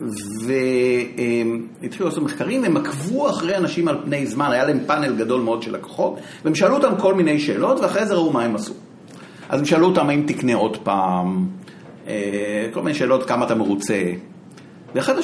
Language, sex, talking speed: Hebrew, male, 175 wpm